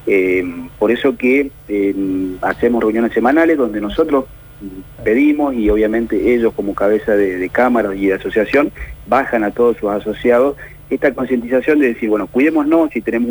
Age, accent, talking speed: 40-59, Argentinian, 160 wpm